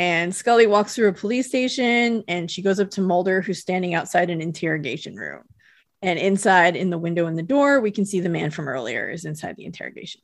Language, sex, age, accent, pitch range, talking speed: English, female, 30-49, American, 170-225 Hz, 225 wpm